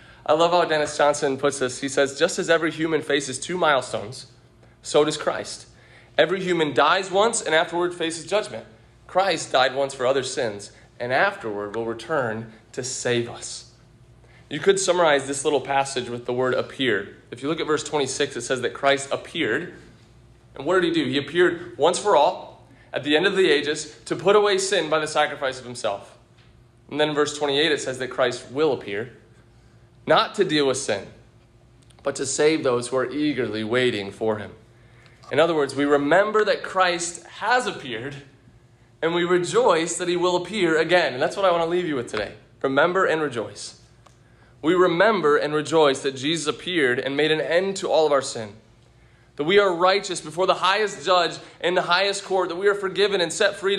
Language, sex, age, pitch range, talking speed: English, male, 30-49, 125-175 Hz, 195 wpm